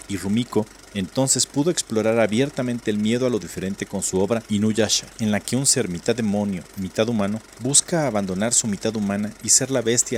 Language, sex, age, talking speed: Spanish, male, 40-59, 195 wpm